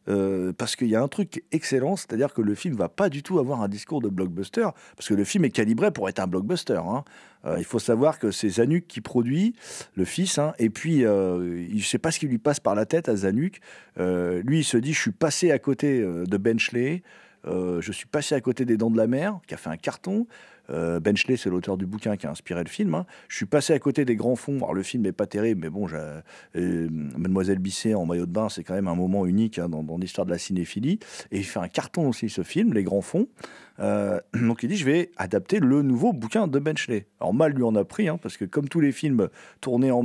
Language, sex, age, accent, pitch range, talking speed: French, male, 40-59, French, 100-140 Hz, 260 wpm